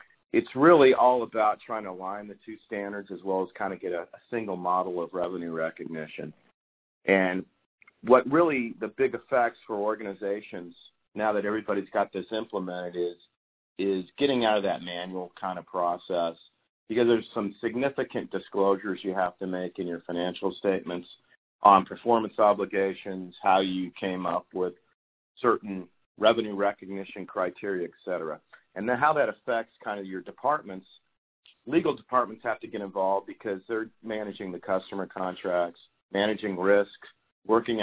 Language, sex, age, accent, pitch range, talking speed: English, male, 40-59, American, 90-105 Hz, 155 wpm